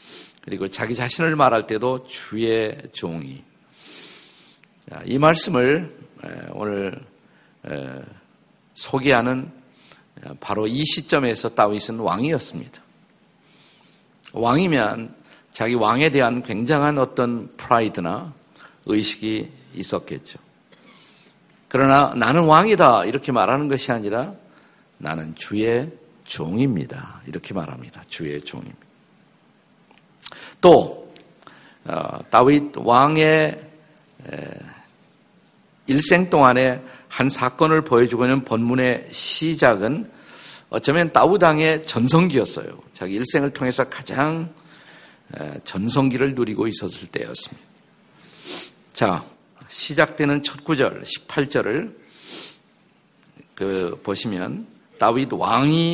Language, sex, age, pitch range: Korean, male, 50-69, 115-155 Hz